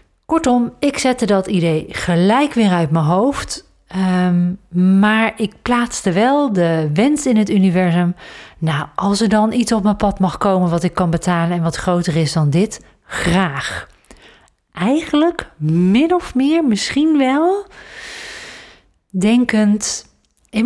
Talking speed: 140 wpm